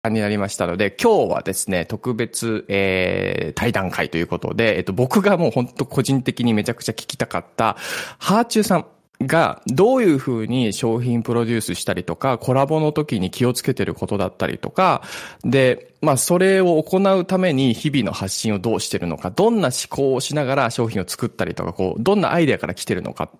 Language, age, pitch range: Japanese, 20-39, 100-150 Hz